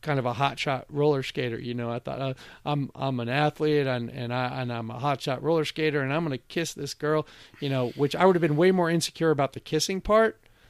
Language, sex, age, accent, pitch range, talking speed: English, male, 40-59, American, 125-160 Hz, 265 wpm